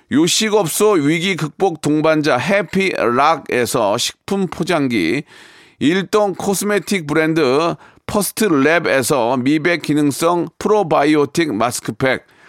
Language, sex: Korean, male